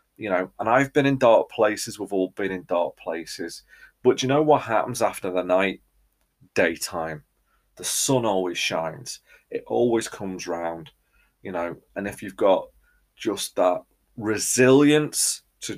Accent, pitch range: British, 95-130 Hz